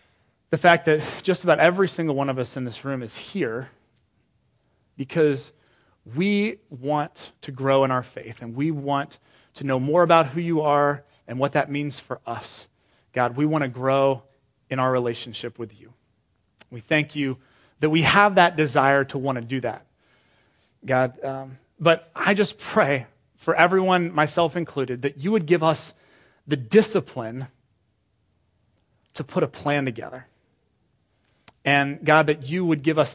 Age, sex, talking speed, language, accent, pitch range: 30-49, male, 165 wpm, English, American, 120-155 Hz